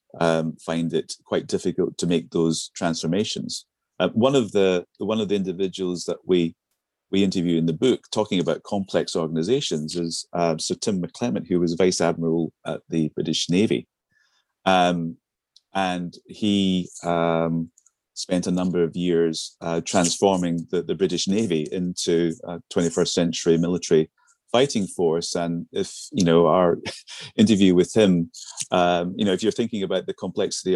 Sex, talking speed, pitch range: male, 155 wpm, 85-90 Hz